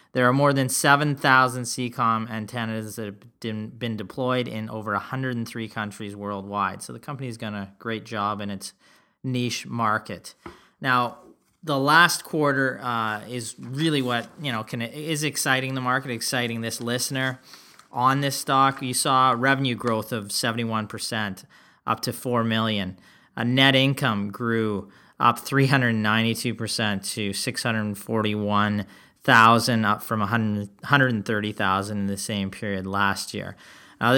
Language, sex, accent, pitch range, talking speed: English, male, American, 110-125 Hz, 140 wpm